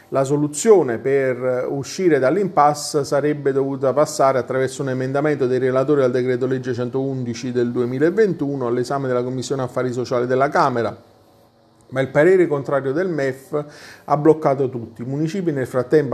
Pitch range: 125-145 Hz